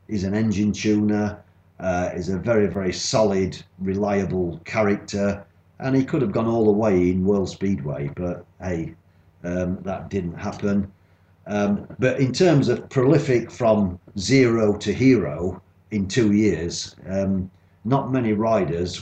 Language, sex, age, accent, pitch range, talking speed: English, male, 50-69, British, 90-110 Hz, 145 wpm